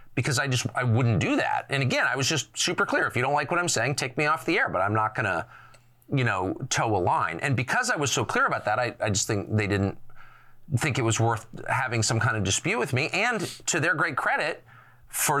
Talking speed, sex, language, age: 255 wpm, male, English, 40-59